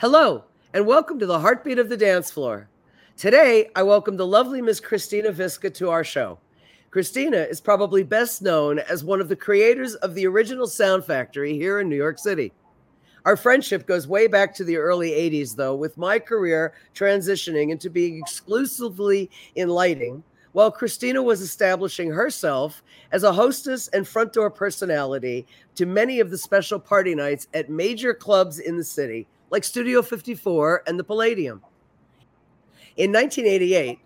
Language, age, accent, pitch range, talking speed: English, 50-69, American, 165-225 Hz, 165 wpm